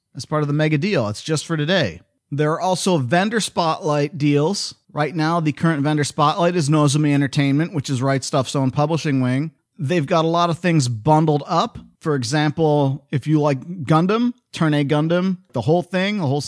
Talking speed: 195 wpm